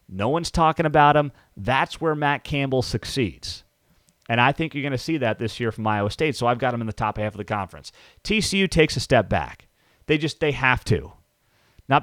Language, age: English, 30-49